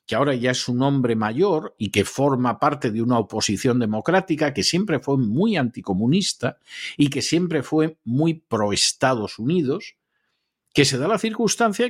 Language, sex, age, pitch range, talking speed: Spanish, male, 50-69, 115-170 Hz, 160 wpm